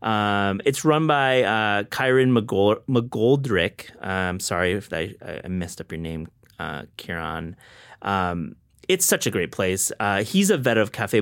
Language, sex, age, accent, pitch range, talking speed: English, male, 30-49, American, 90-120 Hz, 170 wpm